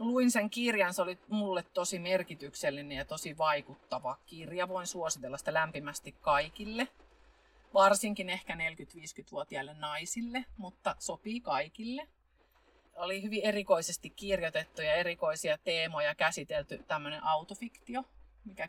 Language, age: Finnish, 30-49